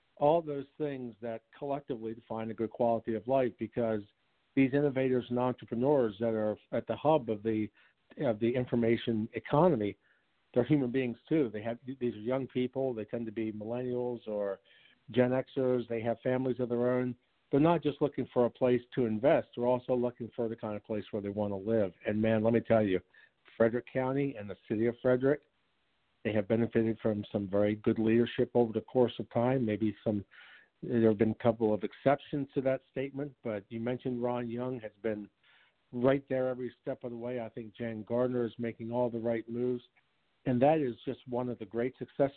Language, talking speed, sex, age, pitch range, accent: English, 205 wpm, male, 50-69, 110-130 Hz, American